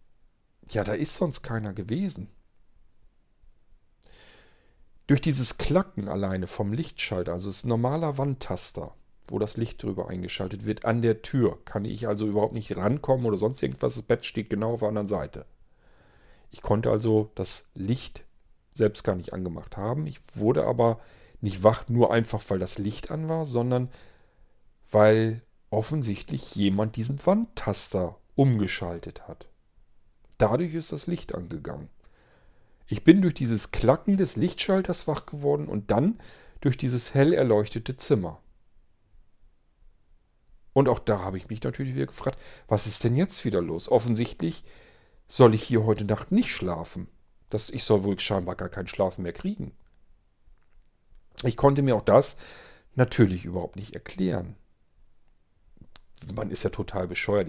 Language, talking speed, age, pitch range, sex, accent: German, 145 wpm, 40-59, 95-125 Hz, male, German